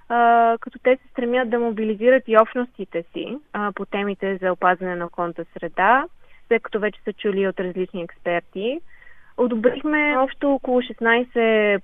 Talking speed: 140 wpm